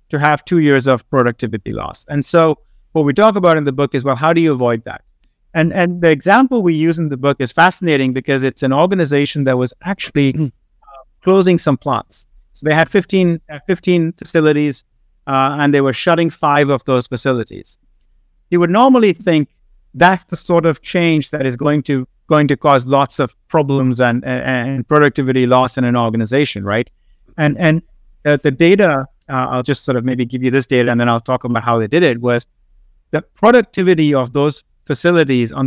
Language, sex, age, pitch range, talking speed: Vietnamese, male, 50-69, 125-165 Hz, 200 wpm